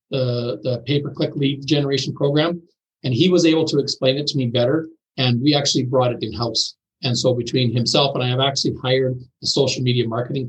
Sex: male